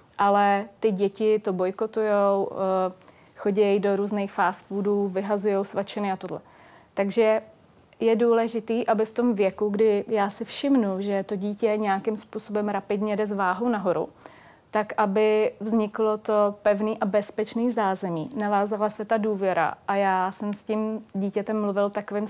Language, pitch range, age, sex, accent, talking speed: Czech, 195-215 Hz, 30-49, female, native, 145 wpm